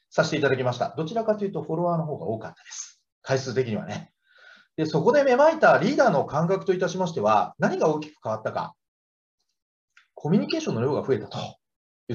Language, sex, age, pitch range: Japanese, male, 40-59, 145-205 Hz